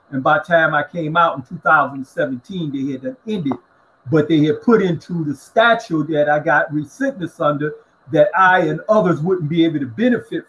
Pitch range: 150-200 Hz